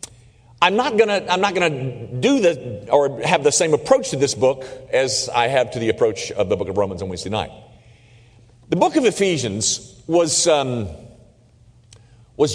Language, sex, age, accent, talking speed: English, male, 40-59, American, 175 wpm